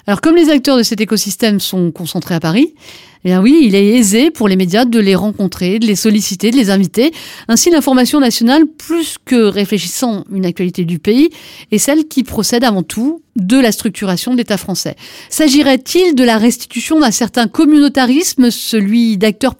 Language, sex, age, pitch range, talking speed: French, female, 40-59, 200-270 Hz, 185 wpm